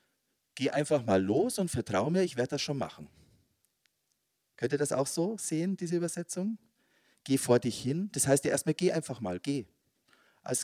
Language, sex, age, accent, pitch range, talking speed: German, male, 40-59, German, 100-140 Hz, 185 wpm